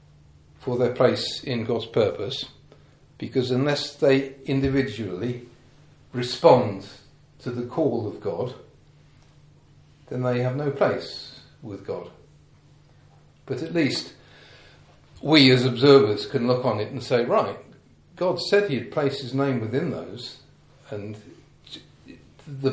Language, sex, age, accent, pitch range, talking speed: English, male, 50-69, British, 120-140 Hz, 125 wpm